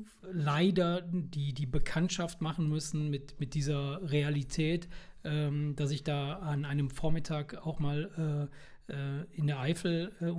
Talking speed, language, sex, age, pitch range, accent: 145 wpm, German, male, 40-59, 140-170 Hz, German